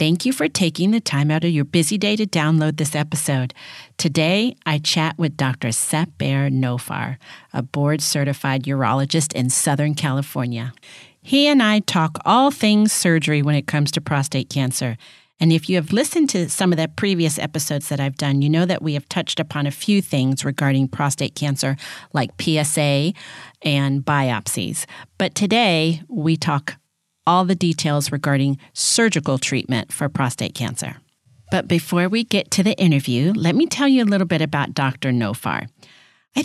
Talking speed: 170 wpm